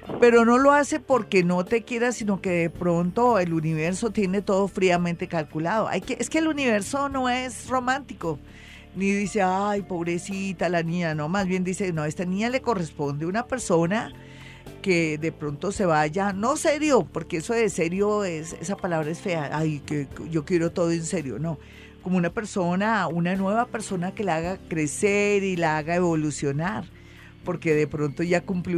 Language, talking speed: Spanish, 185 wpm